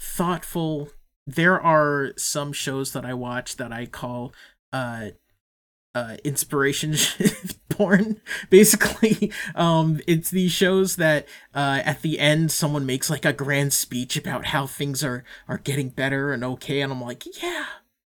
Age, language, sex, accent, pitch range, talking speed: 30-49, English, male, American, 125-175 Hz, 145 wpm